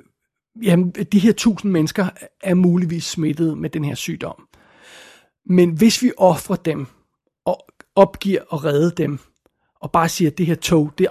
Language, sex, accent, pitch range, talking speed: Danish, male, native, 160-190 Hz, 160 wpm